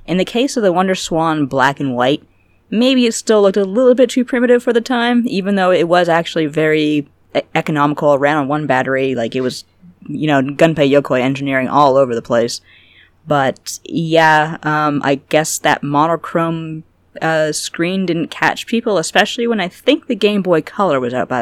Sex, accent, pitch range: female, American, 130-170 Hz